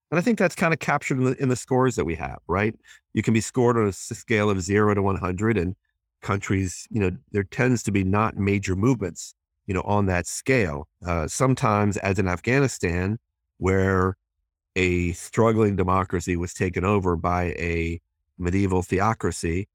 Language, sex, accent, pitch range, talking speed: English, male, American, 90-110 Hz, 175 wpm